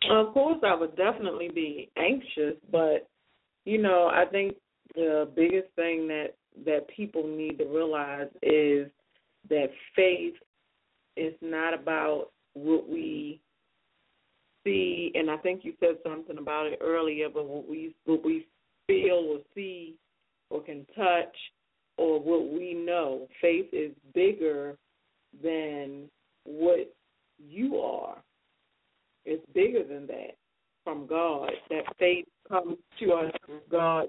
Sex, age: female, 40-59